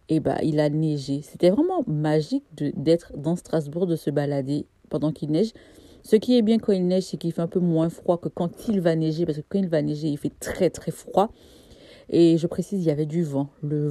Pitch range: 150-180 Hz